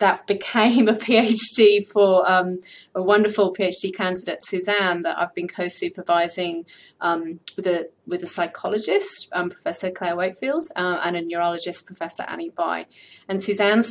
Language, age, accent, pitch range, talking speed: English, 30-49, British, 180-205 Hz, 145 wpm